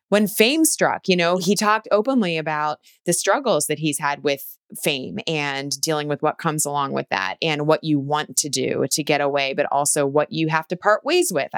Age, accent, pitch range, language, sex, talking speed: 20-39, American, 150-190 Hz, English, female, 220 wpm